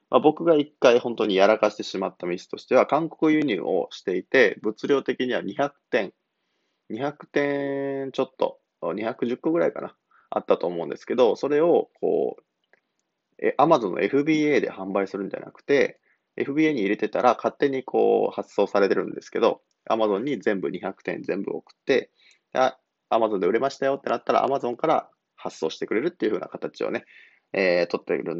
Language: Japanese